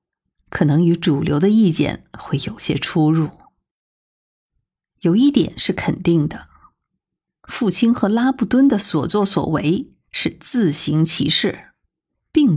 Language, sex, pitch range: Chinese, female, 155-215 Hz